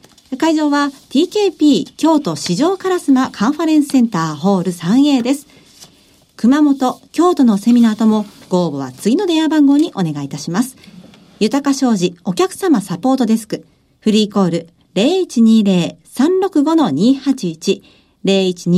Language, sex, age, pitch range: Japanese, female, 50-69, 200-300 Hz